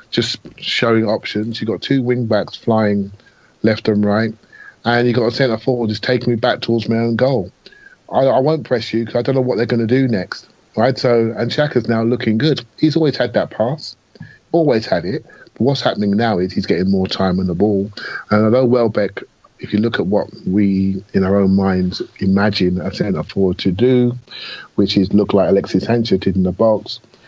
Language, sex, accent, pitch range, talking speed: English, male, British, 95-120 Hz, 210 wpm